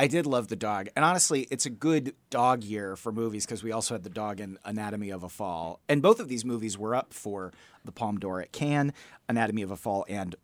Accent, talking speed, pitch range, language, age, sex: American, 245 wpm, 110-140 Hz, English, 30-49, male